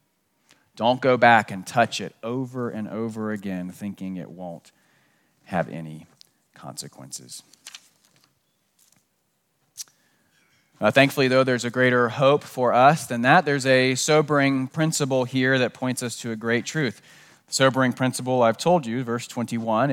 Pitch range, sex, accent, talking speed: 105-135 Hz, male, American, 140 wpm